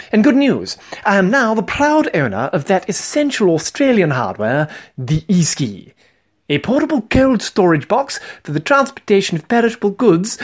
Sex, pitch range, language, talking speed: male, 130-205 Hz, English, 155 wpm